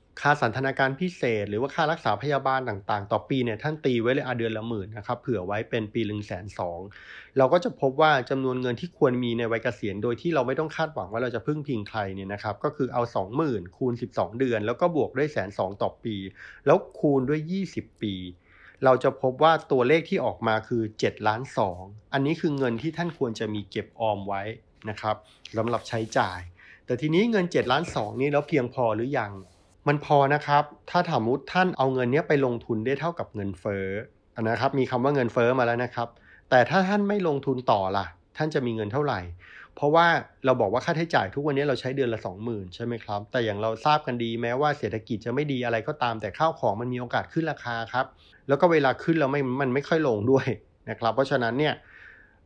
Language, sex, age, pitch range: English, male, 30-49, 110-145 Hz